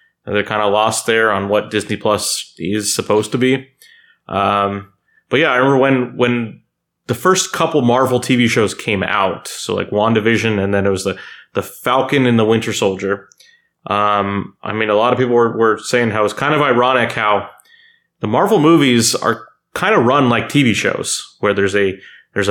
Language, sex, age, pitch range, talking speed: English, male, 30-49, 105-125 Hz, 195 wpm